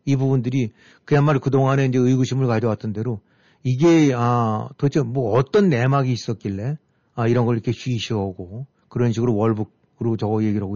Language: Korean